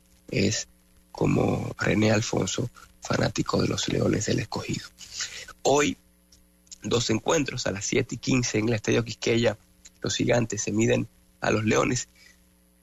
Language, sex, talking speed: English, male, 135 wpm